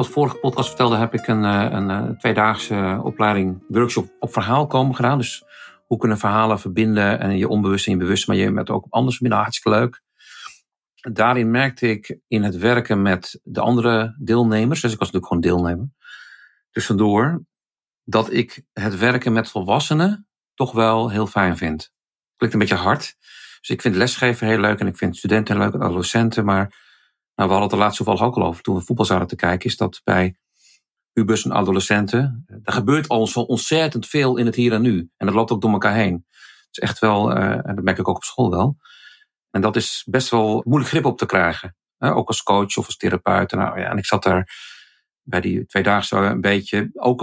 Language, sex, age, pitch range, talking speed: Dutch, male, 50-69, 100-120 Hz, 210 wpm